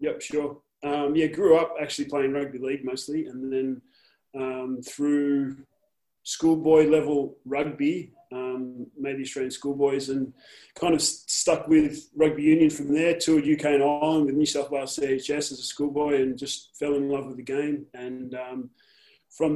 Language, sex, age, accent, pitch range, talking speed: English, male, 20-39, Australian, 135-155 Hz, 170 wpm